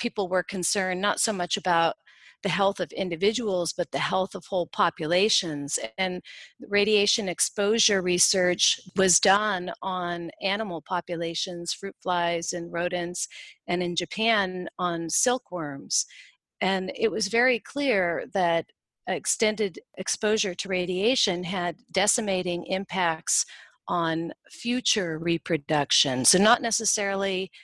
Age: 40-59